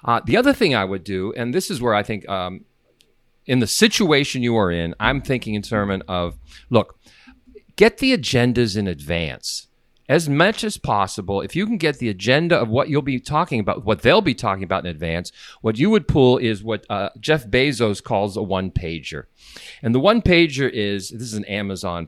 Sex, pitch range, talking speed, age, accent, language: male, 95-130 Hz, 205 wpm, 40-59, American, English